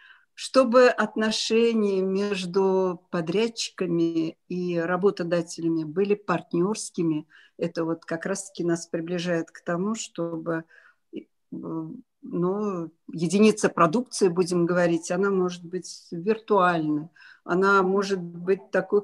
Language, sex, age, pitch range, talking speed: Russian, female, 50-69, 175-210 Hz, 95 wpm